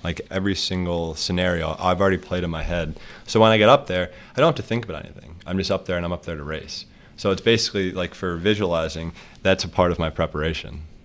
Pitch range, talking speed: 80-90 Hz, 245 wpm